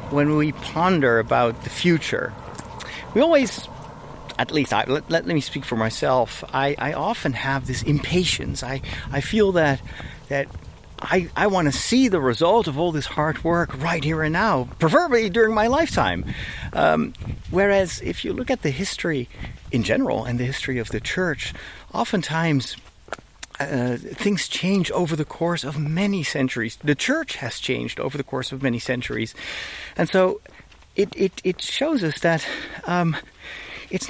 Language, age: English, 50-69